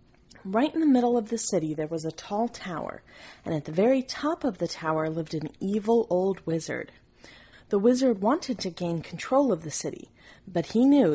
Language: English